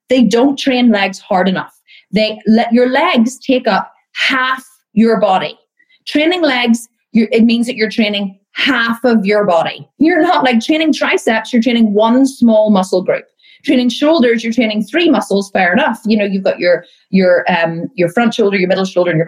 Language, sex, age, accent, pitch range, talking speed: English, female, 30-49, Irish, 185-230 Hz, 185 wpm